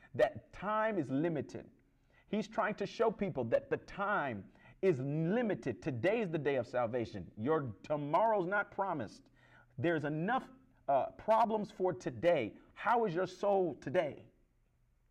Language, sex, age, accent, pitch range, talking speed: English, male, 40-59, American, 140-215 Hz, 135 wpm